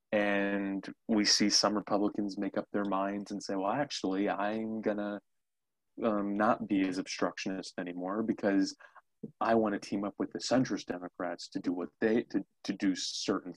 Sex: male